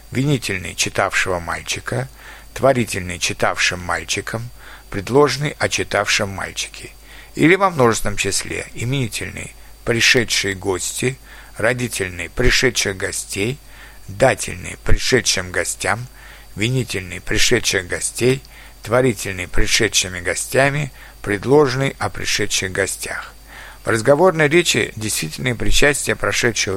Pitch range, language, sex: 100-145 Hz, Russian, male